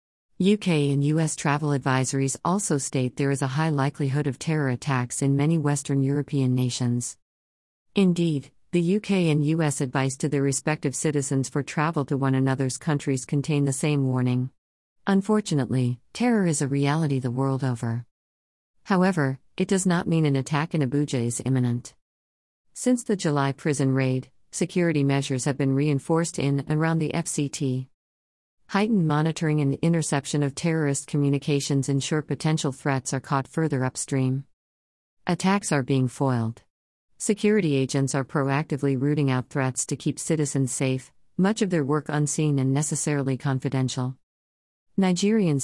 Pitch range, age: 130-155 Hz, 50-69